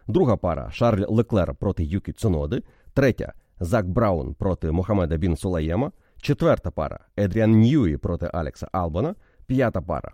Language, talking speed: Ukrainian, 155 wpm